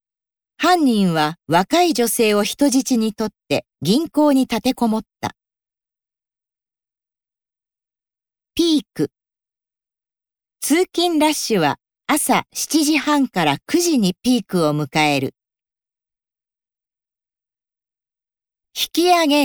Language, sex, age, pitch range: Japanese, female, 50-69, 200-305 Hz